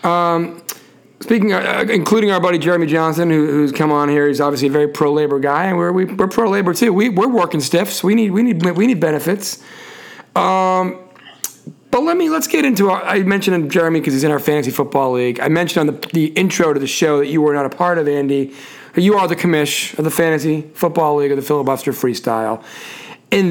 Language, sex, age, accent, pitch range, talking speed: English, male, 40-59, American, 145-185 Hz, 225 wpm